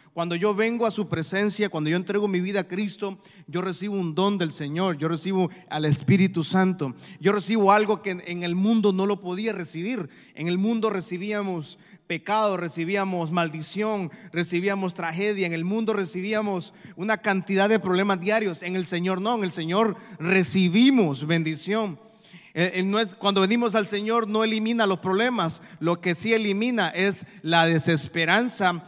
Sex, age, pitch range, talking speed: male, 30-49, 165-205 Hz, 160 wpm